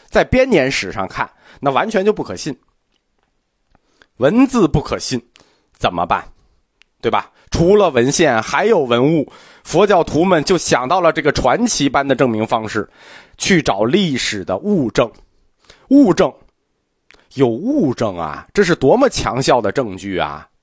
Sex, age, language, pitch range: male, 30-49, Chinese, 125-210 Hz